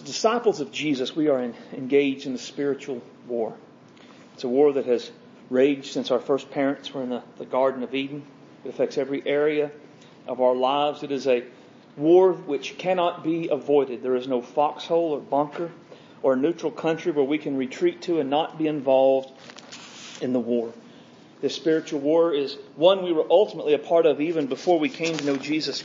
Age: 40-59